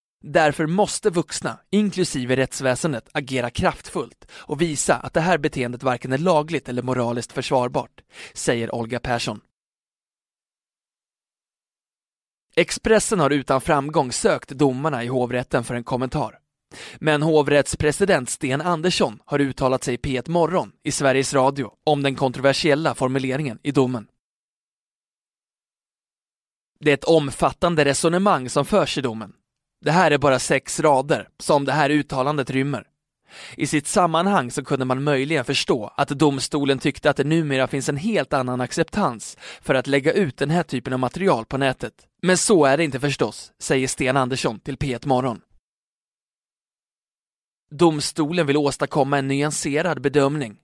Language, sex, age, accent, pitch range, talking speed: Swedish, male, 20-39, native, 130-155 Hz, 140 wpm